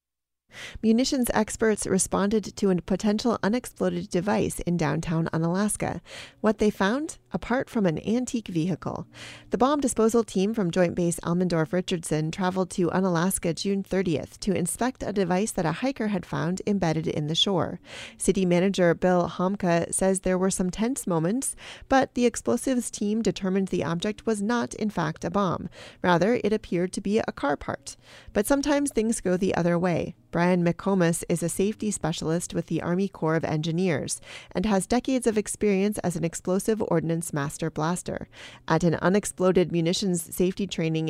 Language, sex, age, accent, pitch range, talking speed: English, female, 30-49, American, 170-215 Hz, 165 wpm